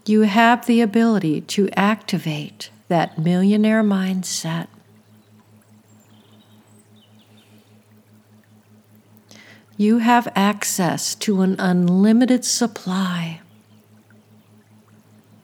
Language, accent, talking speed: English, American, 60 wpm